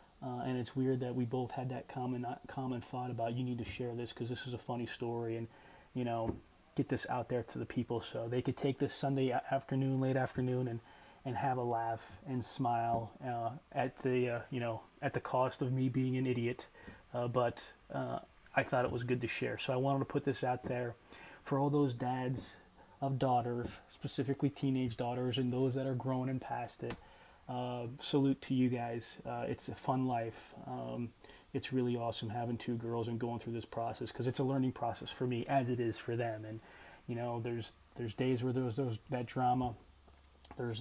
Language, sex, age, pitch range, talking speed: English, male, 20-39, 115-130 Hz, 215 wpm